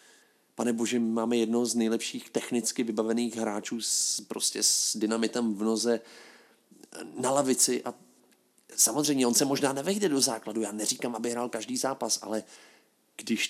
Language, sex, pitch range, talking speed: Slovak, male, 105-115 Hz, 140 wpm